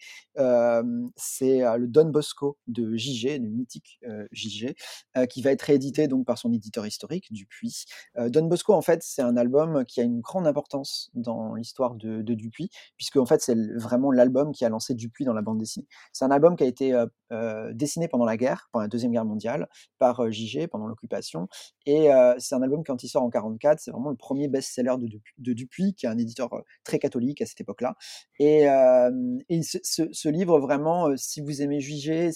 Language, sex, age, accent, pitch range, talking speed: French, male, 30-49, French, 120-155 Hz, 210 wpm